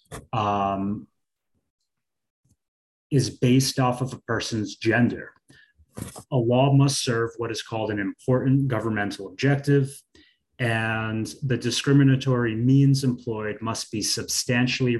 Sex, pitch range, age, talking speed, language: male, 110-135 Hz, 30-49, 110 wpm, English